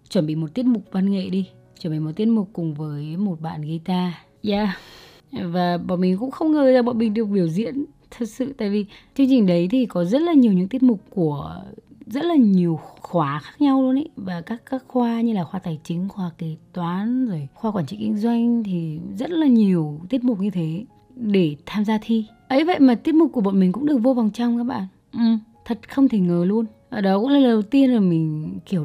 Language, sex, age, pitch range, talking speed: Vietnamese, female, 20-39, 170-235 Hz, 240 wpm